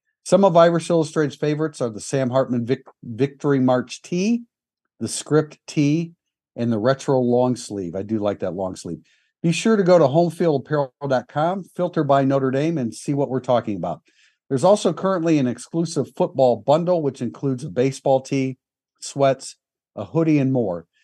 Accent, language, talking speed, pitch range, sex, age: American, English, 170 wpm, 120-155 Hz, male, 50-69